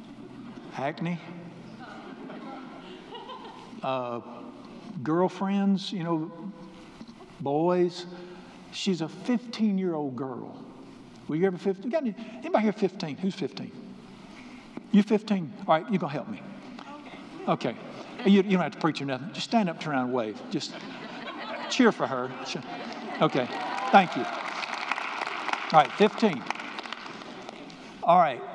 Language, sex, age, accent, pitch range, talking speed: English, male, 60-79, American, 155-220 Hz, 120 wpm